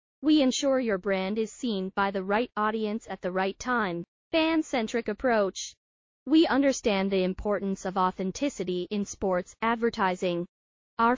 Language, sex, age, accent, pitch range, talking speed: English, female, 30-49, American, 195-250 Hz, 140 wpm